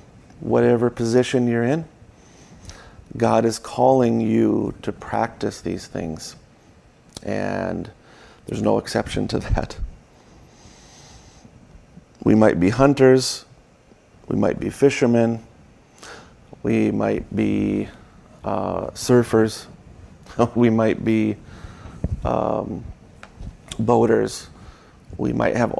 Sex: male